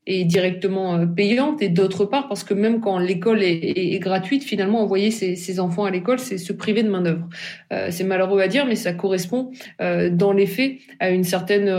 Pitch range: 180-215 Hz